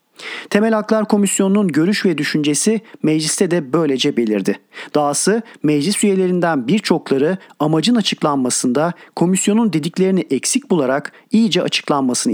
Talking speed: 105 wpm